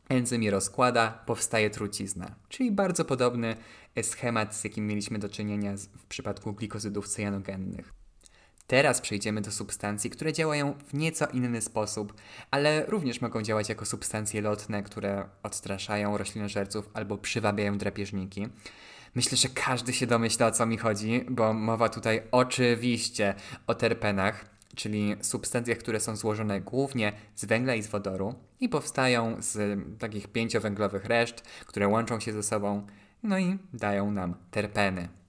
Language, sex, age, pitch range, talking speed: Polish, male, 20-39, 100-120 Hz, 140 wpm